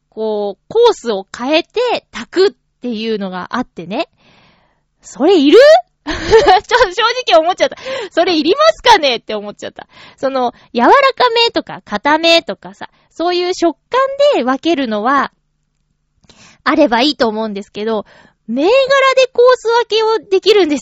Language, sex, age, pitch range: Japanese, female, 20-39, 240-380 Hz